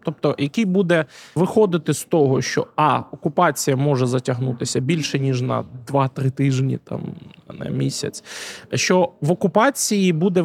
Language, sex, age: Ukrainian, male, 20-39